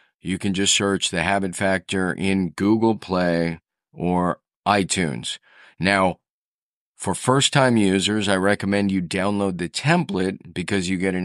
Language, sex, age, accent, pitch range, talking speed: English, male, 40-59, American, 90-105 Hz, 140 wpm